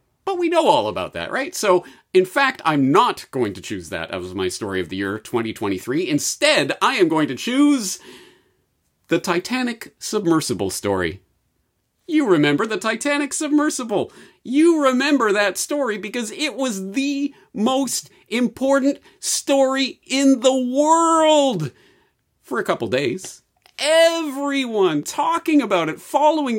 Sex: male